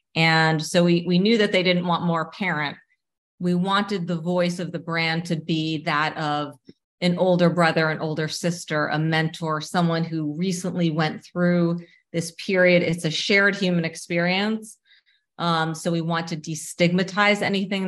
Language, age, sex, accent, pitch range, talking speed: English, 40-59, female, American, 155-180 Hz, 165 wpm